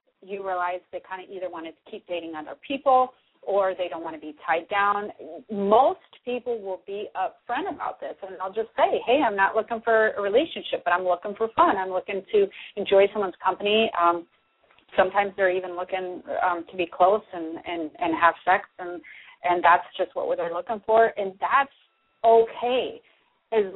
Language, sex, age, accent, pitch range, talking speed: English, female, 30-49, American, 185-230 Hz, 185 wpm